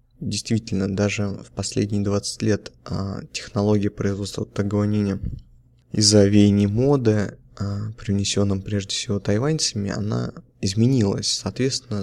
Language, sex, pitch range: Russian, male, 100-120 Hz